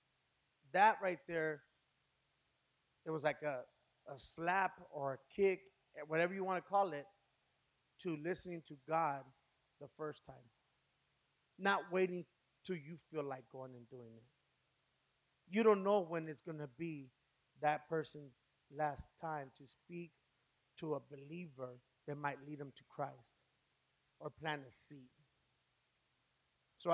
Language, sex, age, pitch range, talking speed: English, male, 30-49, 140-170 Hz, 140 wpm